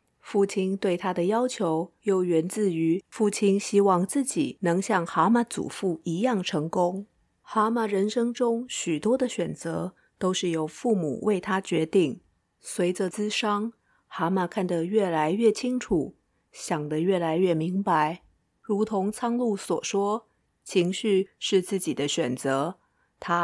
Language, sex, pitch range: Chinese, female, 165-215 Hz